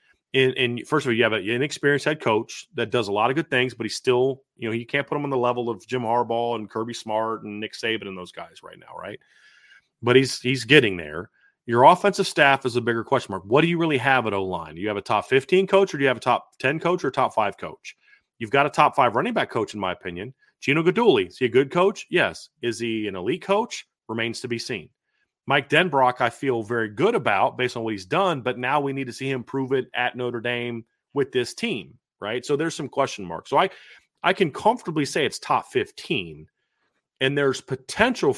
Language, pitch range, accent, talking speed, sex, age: English, 115-145 Hz, American, 245 wpm, male, 30-49